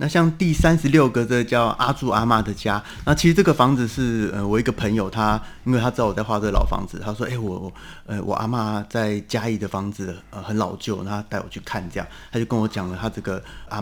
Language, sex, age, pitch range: Chinese, male, 30-49, 100-120 Hz